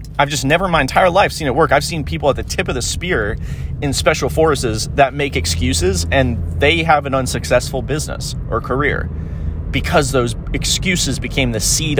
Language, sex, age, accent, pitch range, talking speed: English, male, 30-49, American, 105-145 Hz, 190 wpm